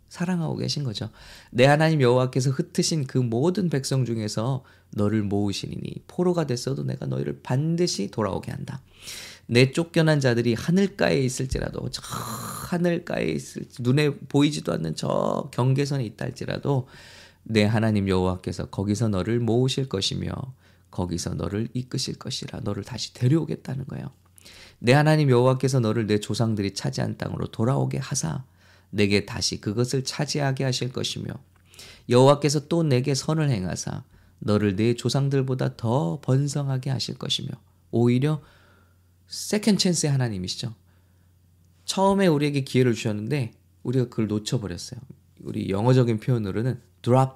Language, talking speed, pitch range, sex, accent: English, 120 wpm, 100-140 Hz, male, Korean